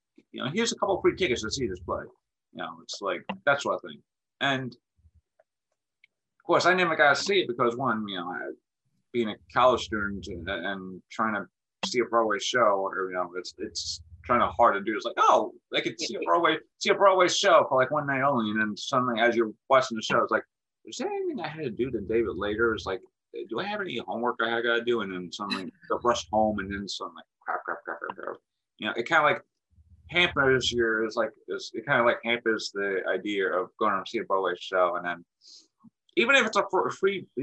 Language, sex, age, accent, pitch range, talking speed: English, male, 30-49, American, 100-150 Hz, 240 wpm